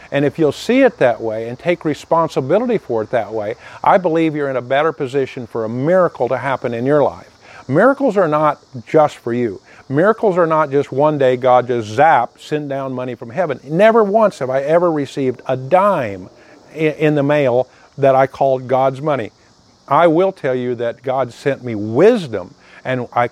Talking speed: 195 wpm